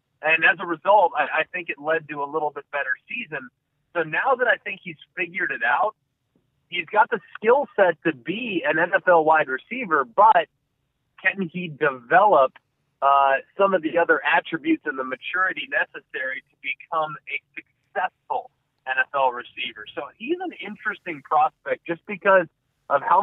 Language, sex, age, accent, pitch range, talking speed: English, male, 30-49, American, 145-180 Hz, 165 wpm